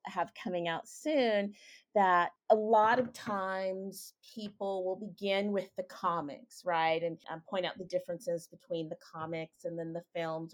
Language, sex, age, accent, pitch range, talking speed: English, female, 30-49, American, 165-205 Hz, 165 wpm